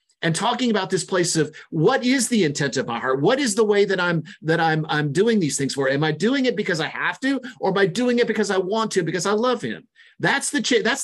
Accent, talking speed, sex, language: American, 275 wpm, male, English